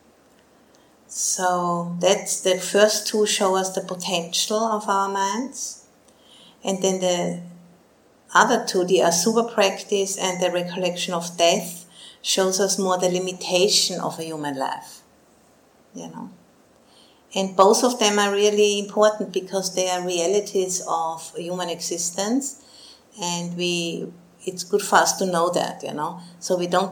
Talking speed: 145 wpm